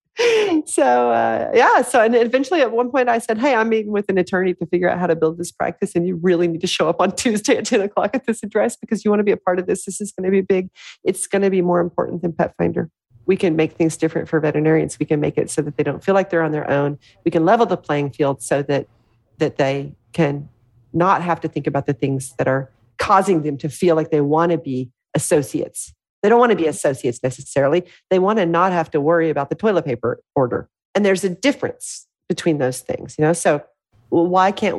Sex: female